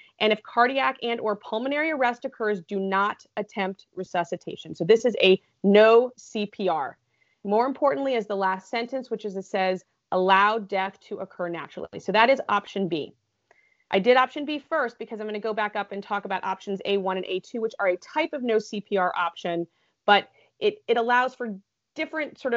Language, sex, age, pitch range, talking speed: English, female, 30-49, 195-240 Hz, 190 wpm